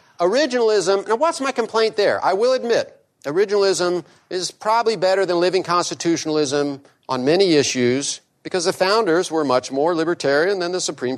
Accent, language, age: American, English, 50-69